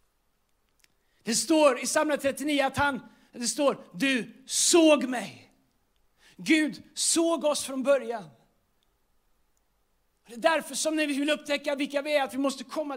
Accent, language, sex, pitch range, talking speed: native, Swedish, male, 240-285 Hz, 145 wpm